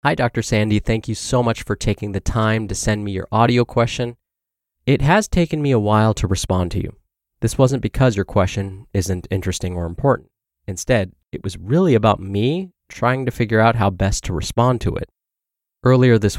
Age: 20-39